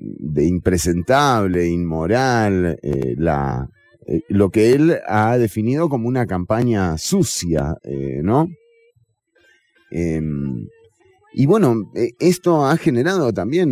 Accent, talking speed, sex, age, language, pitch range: Argentinian, 110 wpm, male, 30-49, English, 95-155 Hz